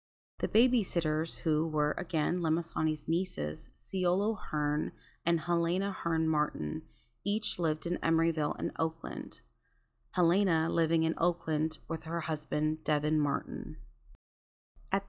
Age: 30-49